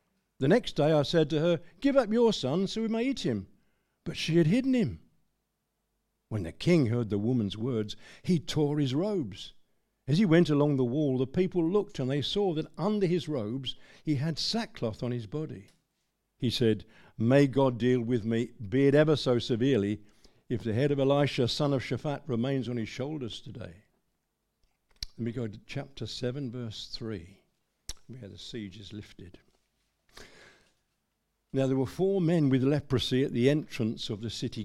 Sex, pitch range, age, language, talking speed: male, 115-165 Hz, 60-79, English, 180 wpm